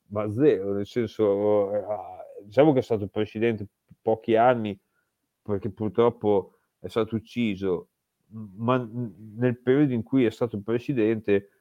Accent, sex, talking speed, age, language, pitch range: native, male, 125 wpm, 30-49, Italian, 100-120 Hz